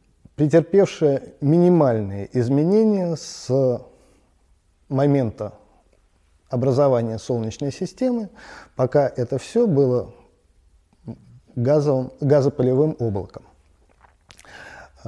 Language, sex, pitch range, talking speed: Russian, male, 115-155 Hz, 60 wpm